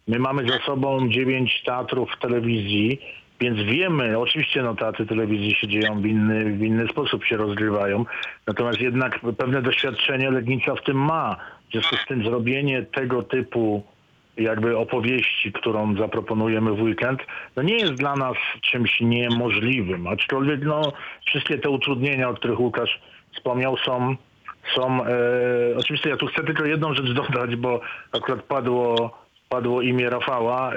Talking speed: 150 wpm